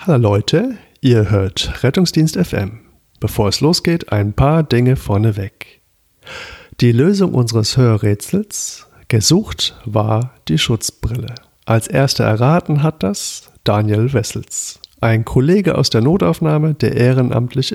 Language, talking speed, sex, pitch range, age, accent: German, 120 wpm, male, 110-150 Hz, 50-69, German